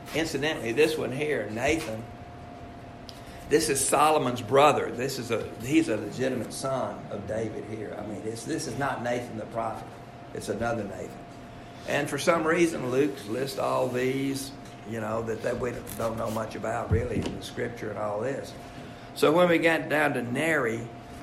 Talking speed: 175 wpm